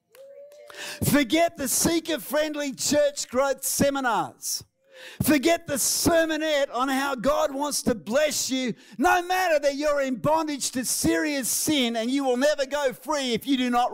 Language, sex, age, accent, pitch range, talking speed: English, male, 50-69, Australian, 235-295 Hz, 155 wpm